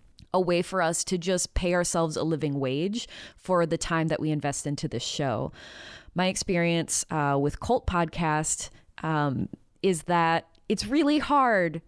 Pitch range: 150-185 Hz